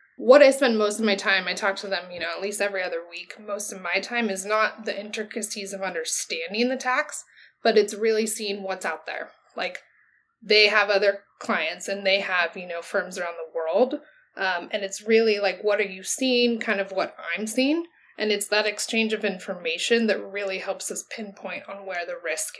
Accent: American